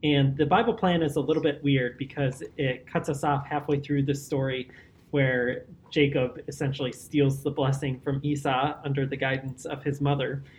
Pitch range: 135-155 Hz